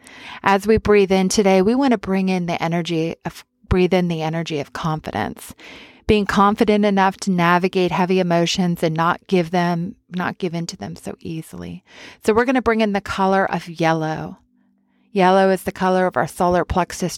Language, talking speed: English, 190 wpm